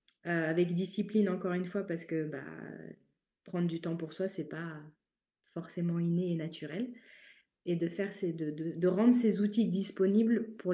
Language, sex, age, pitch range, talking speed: French, female, 20-39, 155-185 Hz, 185 wpm